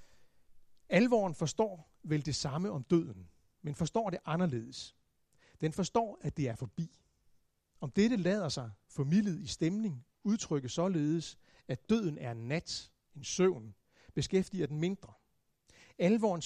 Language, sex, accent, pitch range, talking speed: Danish, male, native, 135-190 Hz, 135 wpm